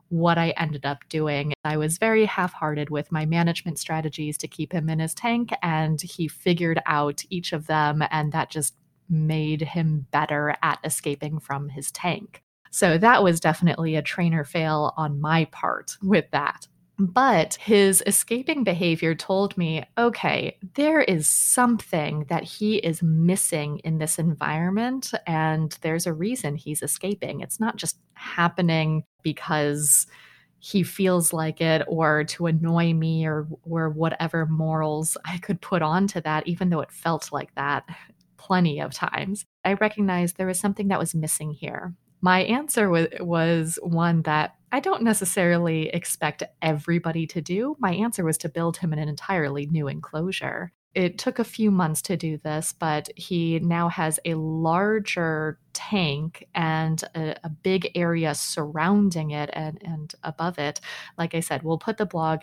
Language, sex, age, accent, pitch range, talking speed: English, female, 30-49, American, 155-185 Hz, 165 wpm